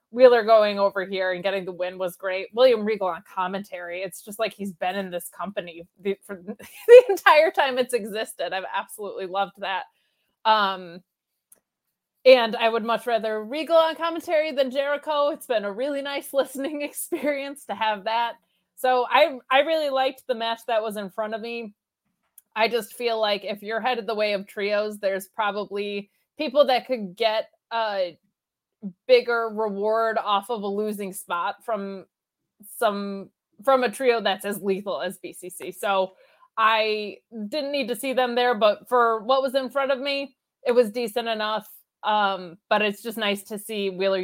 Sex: female